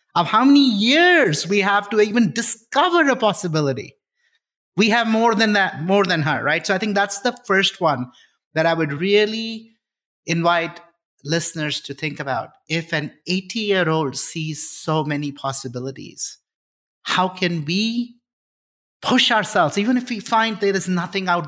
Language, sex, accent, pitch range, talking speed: English, male, Indian, 150-210 Hz, 155 wpm